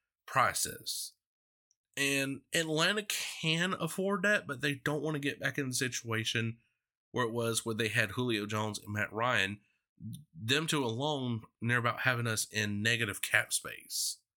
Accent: American